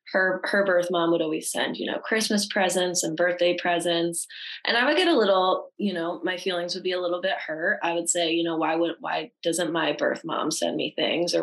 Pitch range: 165-180 Hz